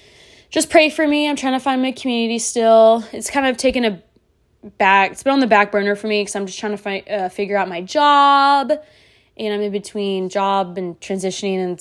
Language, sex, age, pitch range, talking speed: English, female, 20-39, 205-270 Hz, 220 wpm